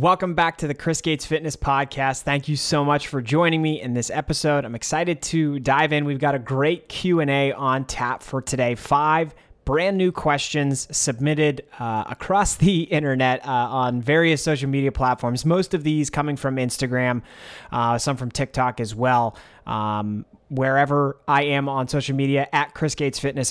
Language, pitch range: English, 125-155 Hz